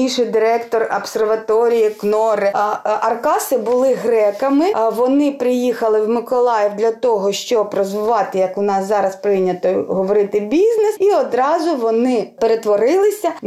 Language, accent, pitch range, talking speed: Ukrainian, native, 220-260 Hz, 110 wpm